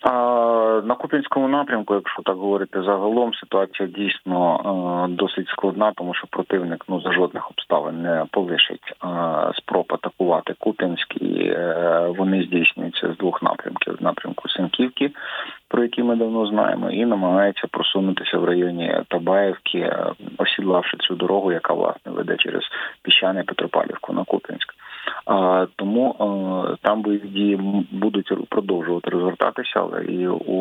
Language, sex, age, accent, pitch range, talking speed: Ukrainian, male, 30-49, native, 90-105 Hz, 135 wpm